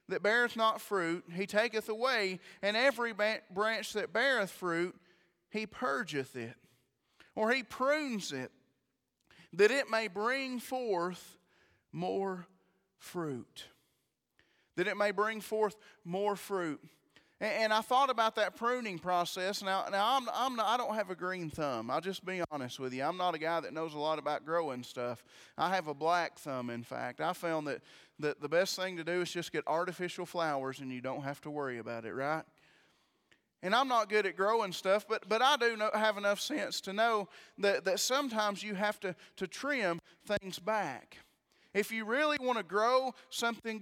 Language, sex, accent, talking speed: English, male, American, 180 wpm